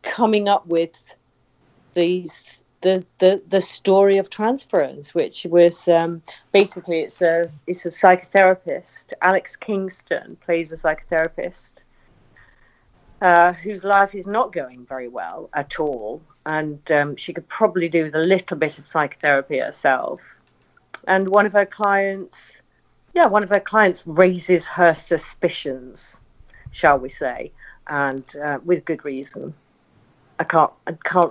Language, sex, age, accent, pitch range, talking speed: English, female, 40-59, British, 155-200 Hz, 135 wpm